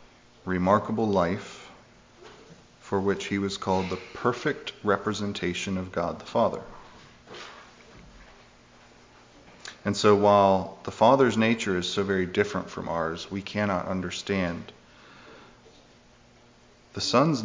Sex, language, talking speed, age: male, English, 105 wpm, 30-49